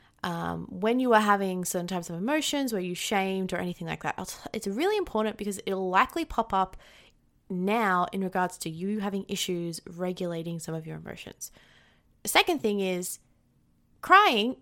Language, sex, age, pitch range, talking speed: English, female, 20-39, 195-265 Hz, 170 wpm